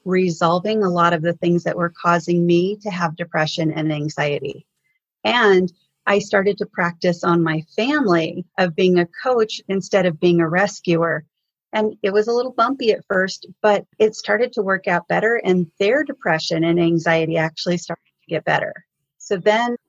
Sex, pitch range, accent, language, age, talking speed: female, 170-200 Hz, American, English, 30-49, 180 wpm